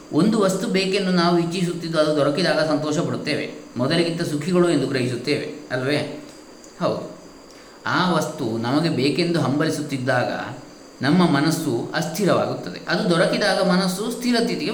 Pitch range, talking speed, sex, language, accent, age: 145-185 Hz, 110 wpm, male, Kannada, native, 20-39